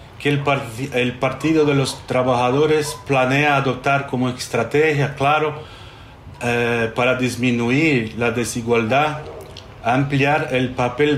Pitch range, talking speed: 115-140 Hz, 115 wpm